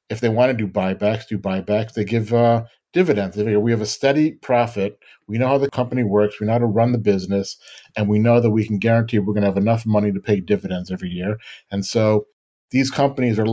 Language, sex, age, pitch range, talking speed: English, male, 40-59, 105-125 Hz, 235 wpm